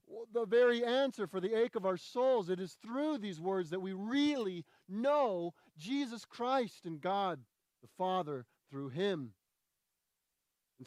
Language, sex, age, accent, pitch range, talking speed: English, male, 40-59, American, 140-195 Hz, 150 wpm